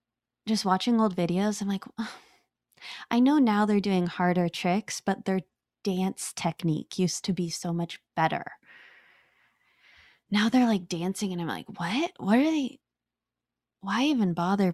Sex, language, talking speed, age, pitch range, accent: female, English, 155 wpm, 20-39, 175-210 Hz, American